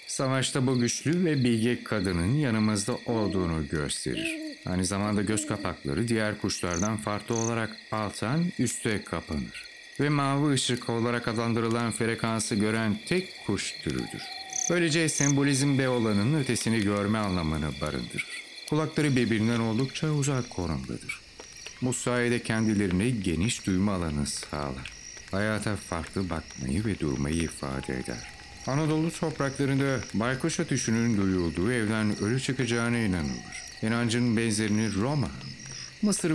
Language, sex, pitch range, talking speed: Turkish, male, 95-130 Hz, 115 wpm